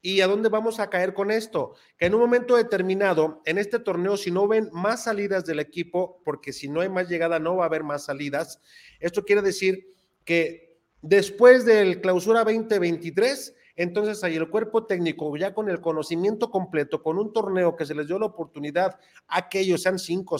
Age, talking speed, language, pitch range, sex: 40-59, 190 wpm, Spanish, 165-215 Hz, male